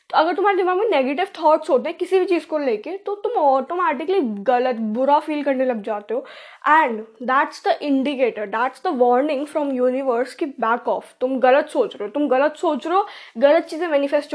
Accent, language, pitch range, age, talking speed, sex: native, Hindi, 265-340 Hz, 10-29, 205 wpm, female